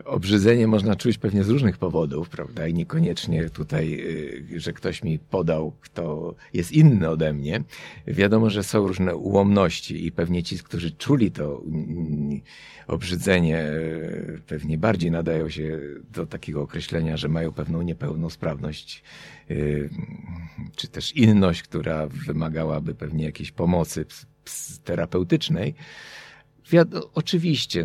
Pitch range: 80-105 Hz